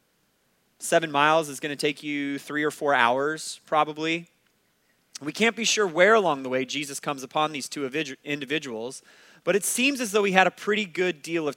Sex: male